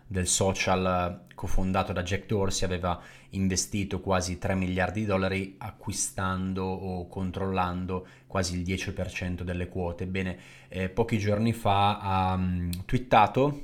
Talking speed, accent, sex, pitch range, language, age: 130 wpm, native, male, 95-110 Hz, Italian, 20-39